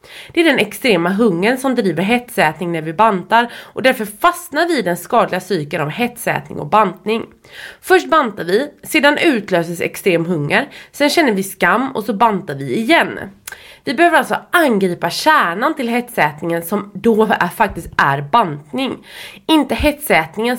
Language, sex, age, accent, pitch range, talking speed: English, female, 20-39, Swedish, 180-265 Hz, 155 wpm